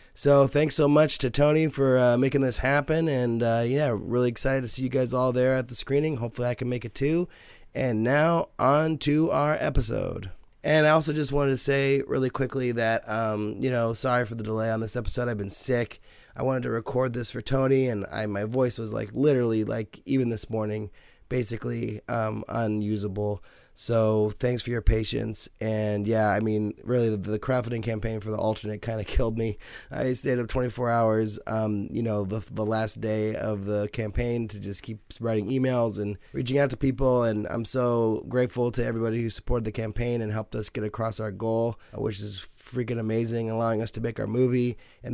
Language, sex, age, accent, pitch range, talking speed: English, male, 20-39, American, 110-130 Hz, 205 wpm